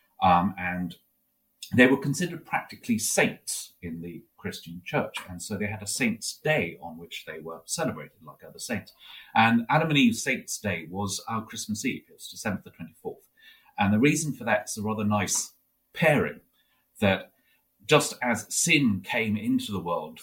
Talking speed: 175 wpm